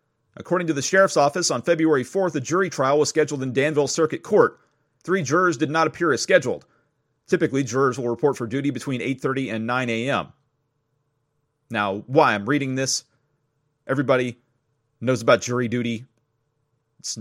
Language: English